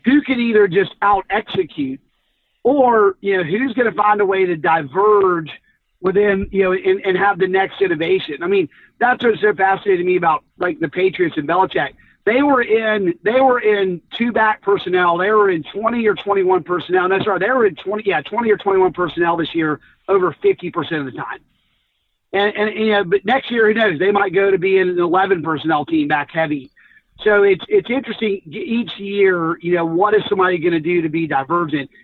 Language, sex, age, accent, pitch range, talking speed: English, male, 40-59, American, 170-210 Hz, 215 wpm